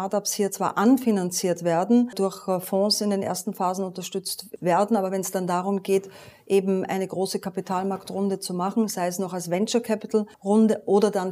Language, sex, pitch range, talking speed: German, female, 185-210 Hz, 170 wpm